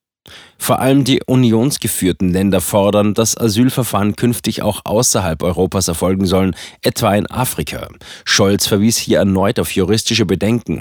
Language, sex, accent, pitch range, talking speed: German, male, German, 95-115 Hz, 135 wpm